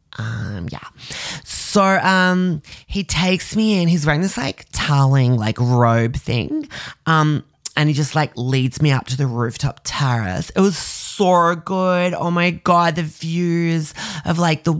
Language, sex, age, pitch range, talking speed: English, male, 20-39, 120-155 Hz, 160 wpm